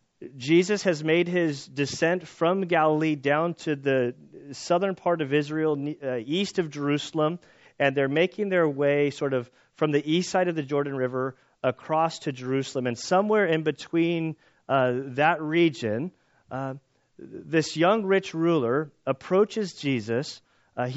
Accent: American